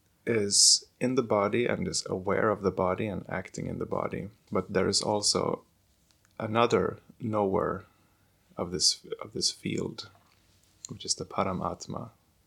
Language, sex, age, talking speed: English, male, 20-39, 145 wpm